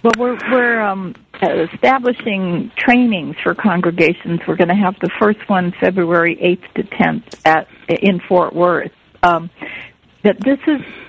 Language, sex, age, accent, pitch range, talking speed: English, female, 50-69, American, 175-230 Hz, 145 wpm